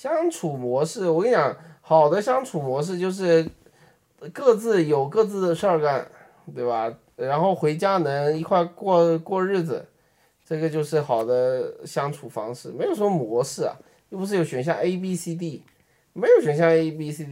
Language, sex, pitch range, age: Chinese, male, 140-185 Hz, 20-39